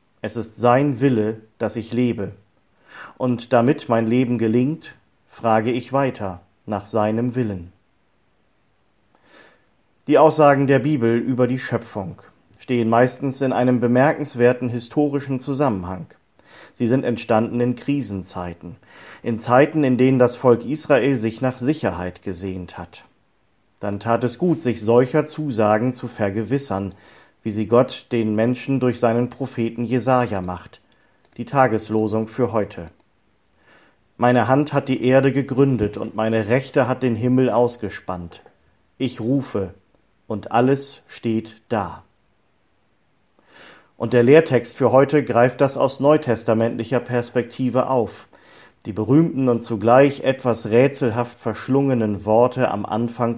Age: 40-59